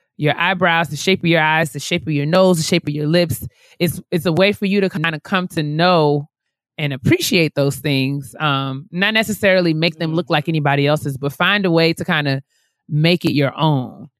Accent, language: American, English